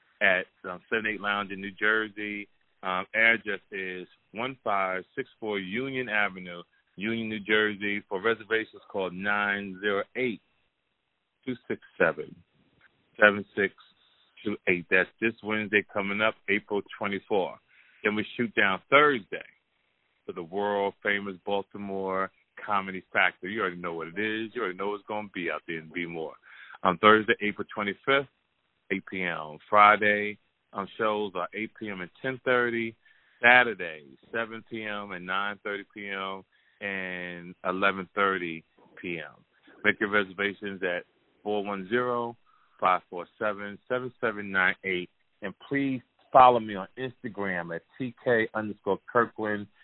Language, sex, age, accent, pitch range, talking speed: English, male, 30-49, American, 95-110 Hz, 115 wpm